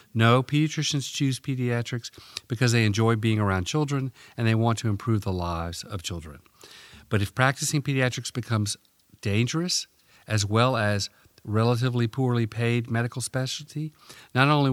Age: 50-69